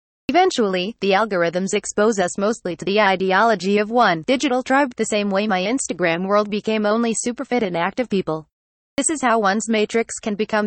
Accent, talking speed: American, 185 wpm